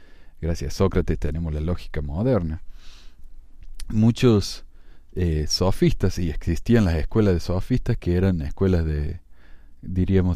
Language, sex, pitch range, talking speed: Spanish, male, 80-105 Hz, 120 wpm